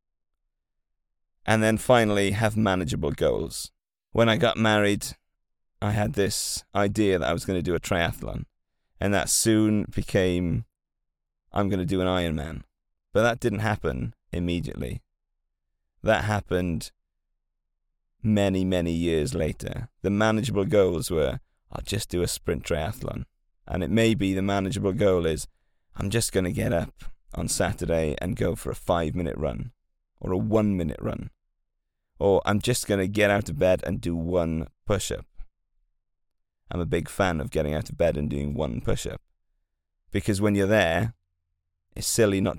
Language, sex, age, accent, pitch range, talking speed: English, male, 30-49, British, 75-105 Hz, 160 wpm